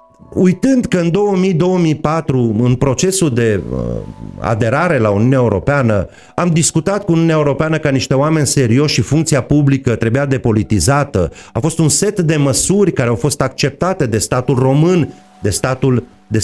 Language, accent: Romanian, native